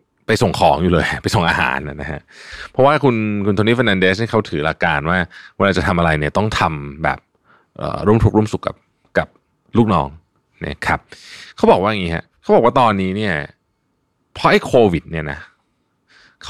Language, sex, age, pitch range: Thai, male, 20-39, 90-135 Hz